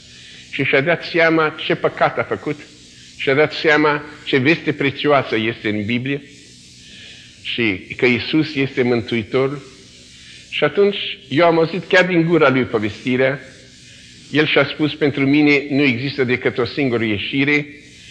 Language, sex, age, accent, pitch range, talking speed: Romanian, male, 50-69, Italian, 115-150 Hz, 145 wpm